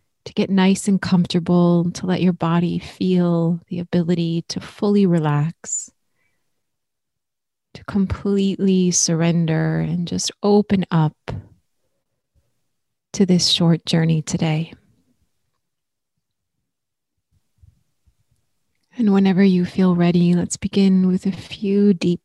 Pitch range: 160-185 Hz